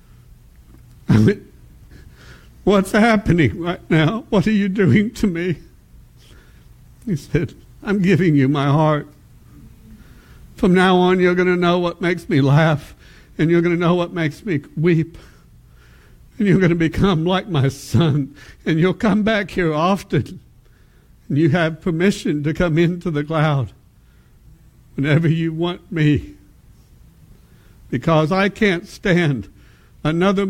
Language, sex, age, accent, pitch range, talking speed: English, male, 60-79, American, 155-215 Hz, 140 wpm